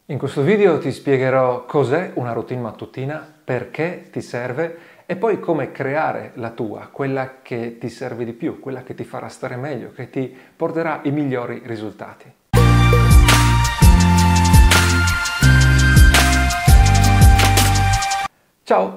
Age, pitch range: 40-59, 115-150 Hz